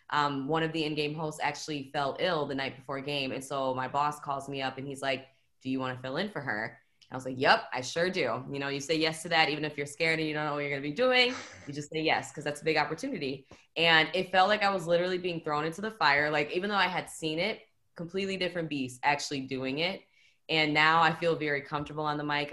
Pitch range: 140-160 Hz